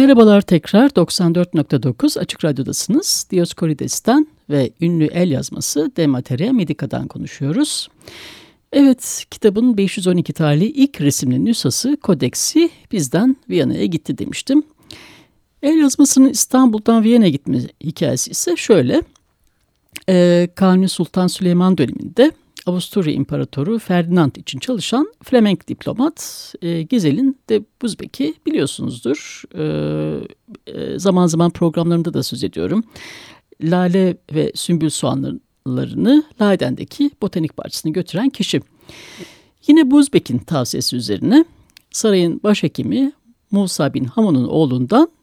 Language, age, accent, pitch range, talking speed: Turkish, 60-79, native, 160-255 Hz, 100 wpm